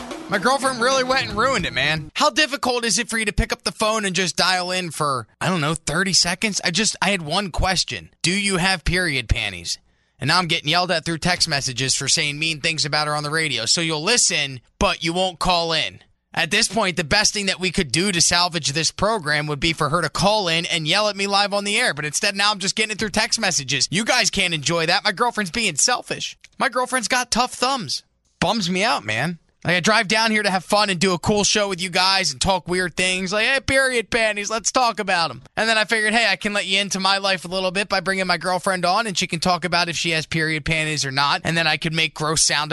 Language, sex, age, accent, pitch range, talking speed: English, male, 20-39, American, 155-210 Hz, 265 wpm